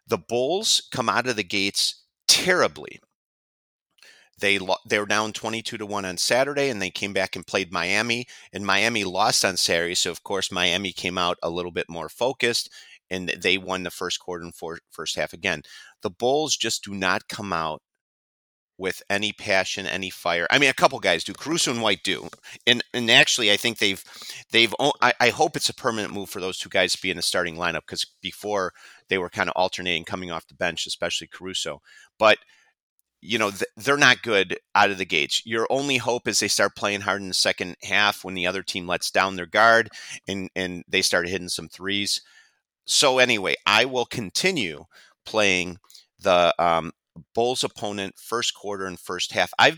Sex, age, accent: male, 40-59, American